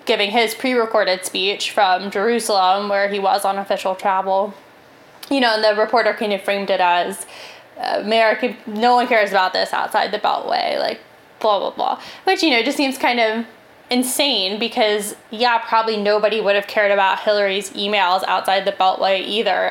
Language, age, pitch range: English, 10-29, 195-230 Hz